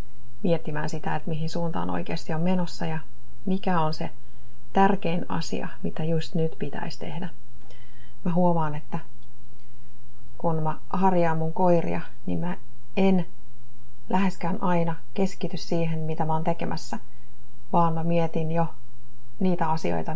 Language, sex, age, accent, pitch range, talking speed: Finnish, female, 30-49, native, 120-170 Hz, 130 wpm